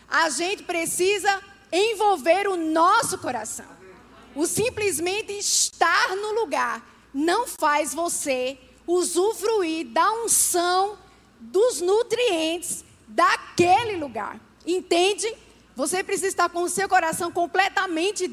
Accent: Brazilian